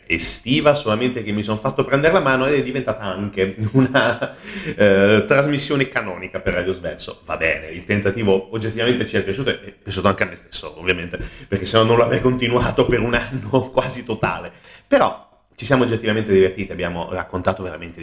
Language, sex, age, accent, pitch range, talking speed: Italian, male, 30-49, native, 95-115 Hz, 185 wpm